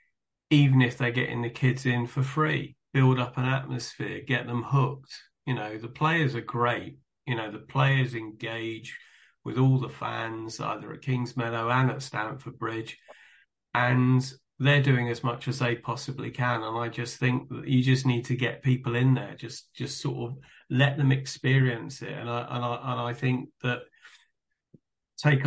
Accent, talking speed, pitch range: British, 185 wpm, 115-135 Hz